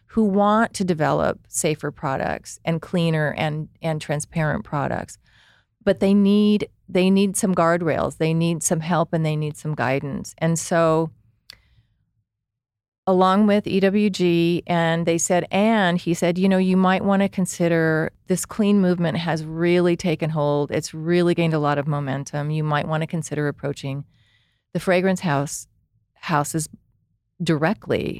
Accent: American